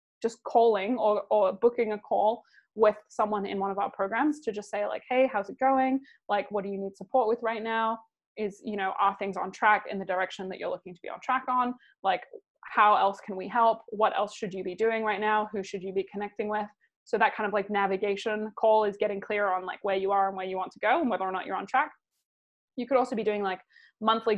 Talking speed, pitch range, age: 255 wpm, 200-235 Hz, 20-39